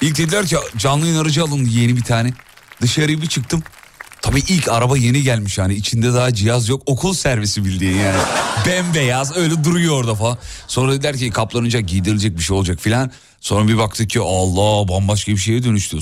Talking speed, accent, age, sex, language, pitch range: 185 wpm, native, 40-59, male, Turkish, 105-140 Hz